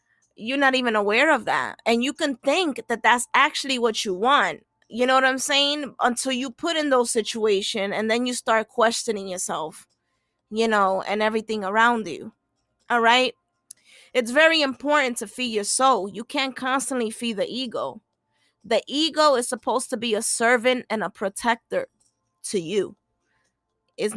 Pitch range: 210-265 Hz